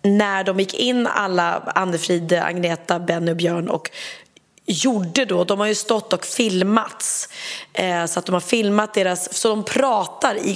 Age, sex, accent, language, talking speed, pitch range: 30-49, female, native, Swedish, 170 wpm, 185-225 Hz